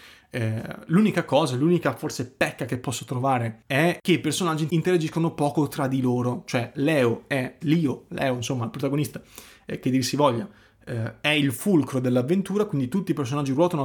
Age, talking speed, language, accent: 30-49, 180 wpm, Italian, native